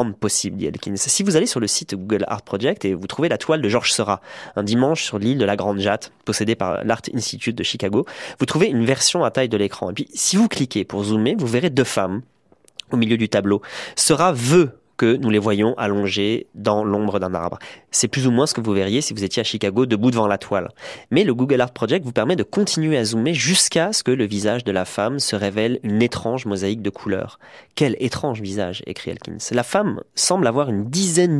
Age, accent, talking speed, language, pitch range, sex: 20-39, French, 235 wpm, French, 100-135 Hz, male